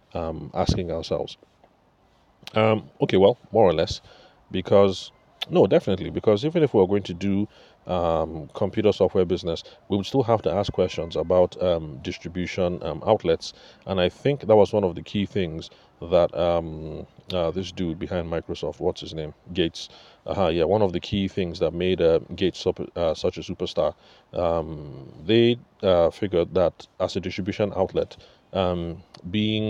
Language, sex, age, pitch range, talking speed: English, male, 30-49, 85-100 Hz, 170 wpm